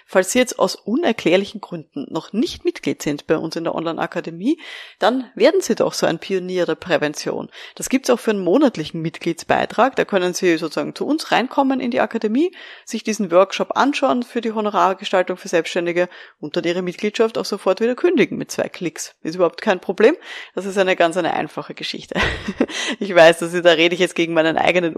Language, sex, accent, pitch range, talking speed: German, female, German, 175-250 Hz, 195 wpm